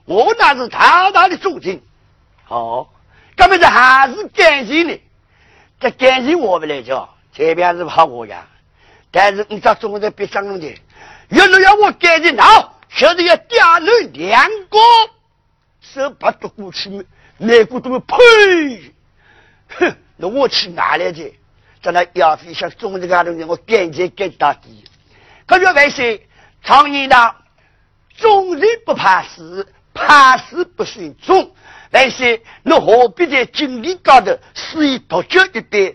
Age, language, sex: 50-69, Chinese, male